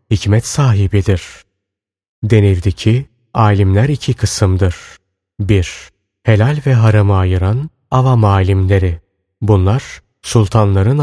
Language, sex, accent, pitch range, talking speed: Turkish, male, native, 95-125 Hz, 85 wpm